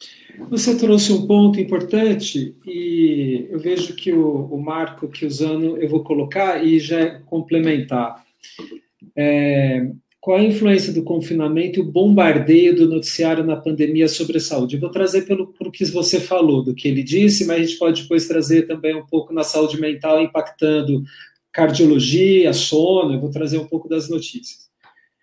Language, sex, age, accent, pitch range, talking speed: Portuguese, male, 50-69, Brazilian, 145-185 Hz, 170 wpm